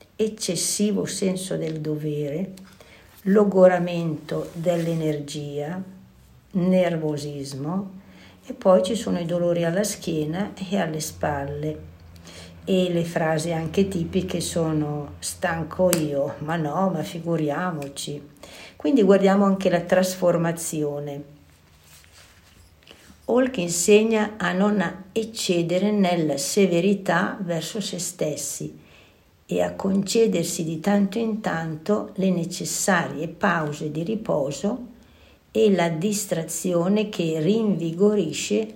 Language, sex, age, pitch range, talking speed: Italian, female, 60-79, 155-200 Hz, 95 wpm